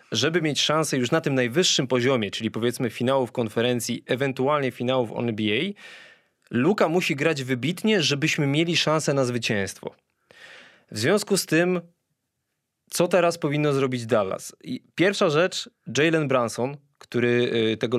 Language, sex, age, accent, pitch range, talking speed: Polish, male, 20-39, native, 120-155 Hz, 130 wpm